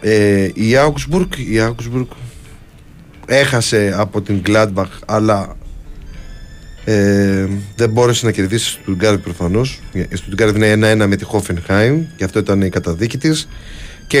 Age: 30-49